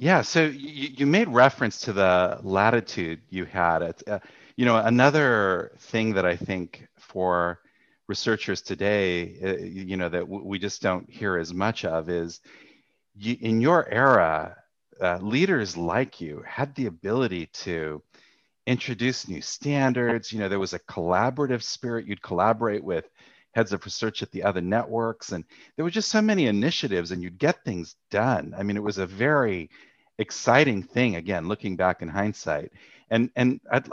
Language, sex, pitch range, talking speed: English, male, 90-120 Hz, 170 wpm